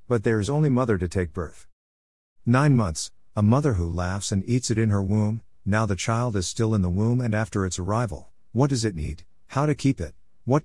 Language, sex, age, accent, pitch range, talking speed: Hindi, male, 50-69, American, 90-125 Hz, 230 wpm